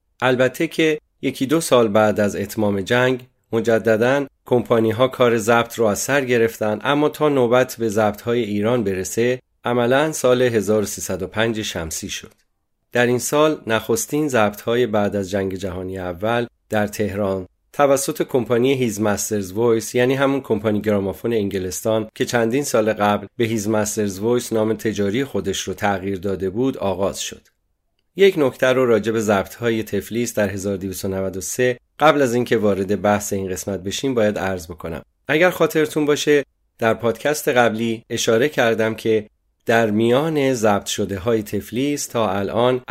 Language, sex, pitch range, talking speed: Persian, male, 100-125 Hz, 150 wpm